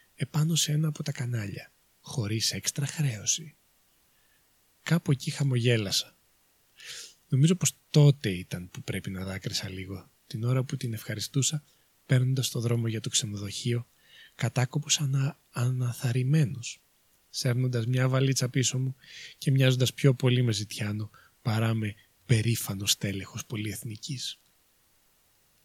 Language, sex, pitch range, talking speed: Greek, male, 110-145 Hz, 120 wpm